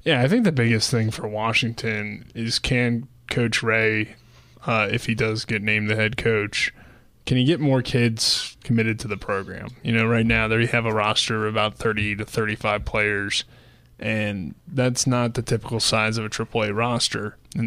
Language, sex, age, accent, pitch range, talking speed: English, male, 20-39, American, 110-125 Hz, 185 wpm